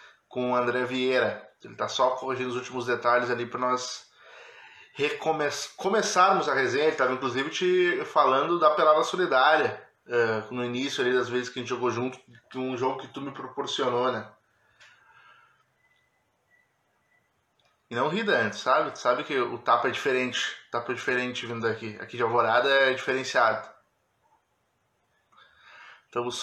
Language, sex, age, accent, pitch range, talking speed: Portuguese, male, 20-39, Brazilian, 120-135 Hz, 150 wpm